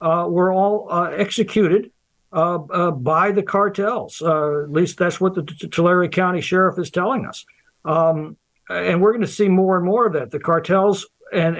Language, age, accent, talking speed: English, 60-79, American, 185 wpm